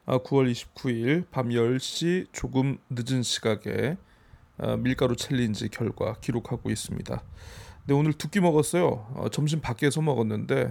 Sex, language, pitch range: male, Korean, 125-165 Hz